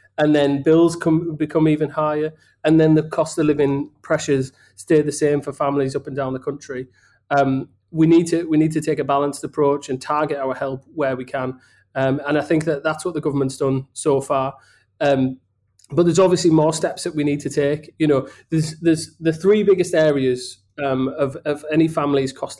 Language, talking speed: English, 210 wpm